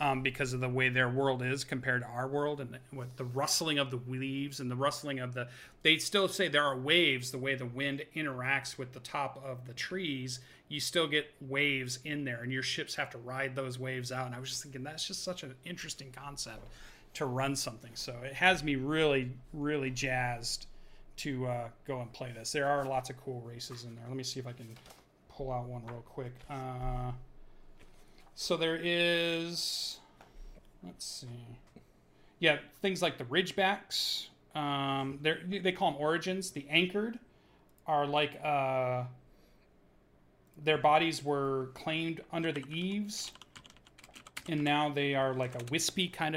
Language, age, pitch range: English, 30-49, 125-150 Hz